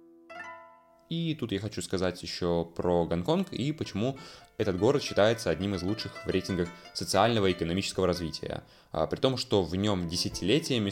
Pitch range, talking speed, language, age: 90-115 Hz, 155 wpm, Russian, 20-39